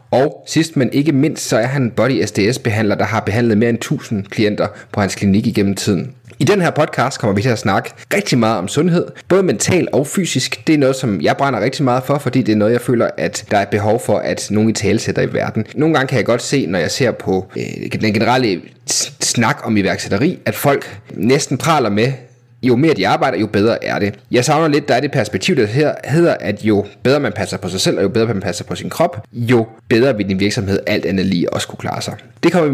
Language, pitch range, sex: Danish, 105-140 Hz, male